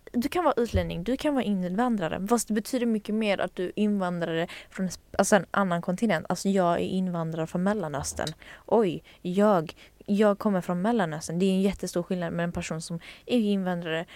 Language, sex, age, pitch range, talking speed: Swedish, female, 20-39, 175-215 Hz, 185 wpm